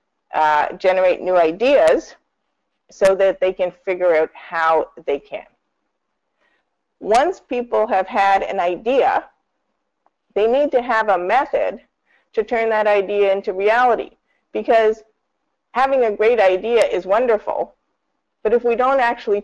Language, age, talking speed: English, 50-69, 135 wpm